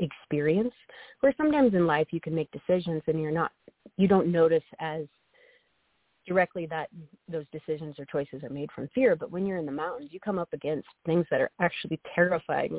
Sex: female